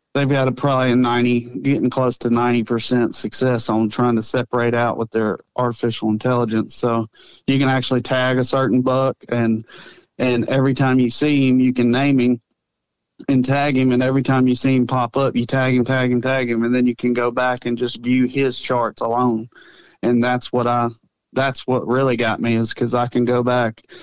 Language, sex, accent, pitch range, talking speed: English, male, American, 120-130 Hz, 210 wpm